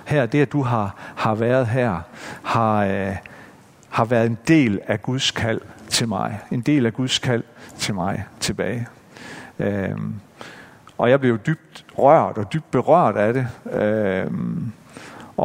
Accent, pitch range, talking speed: native, 115-160 Hz, 150 wpm